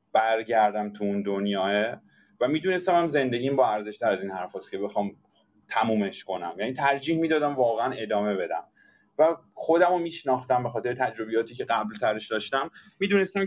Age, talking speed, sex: 30-49, 145 wpm, male